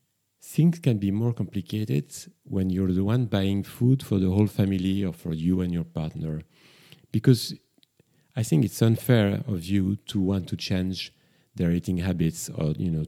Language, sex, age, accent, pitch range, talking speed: English, male, 40-59, French, 85-115 Hz, 175 wpm